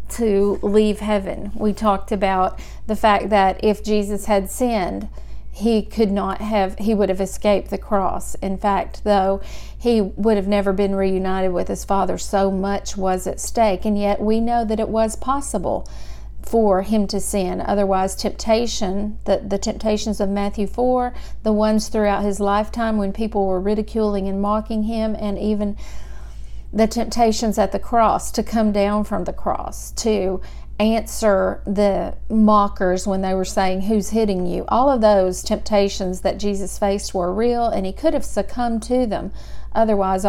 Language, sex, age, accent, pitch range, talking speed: English, female, 50-69, American, 195-220 Hz, 170 wpm